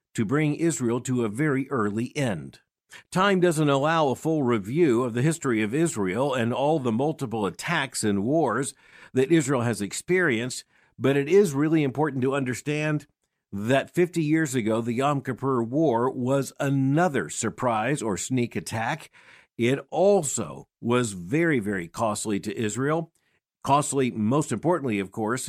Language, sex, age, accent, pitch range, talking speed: English, male, 50-69, American, 115-150 Hz, 150 wpm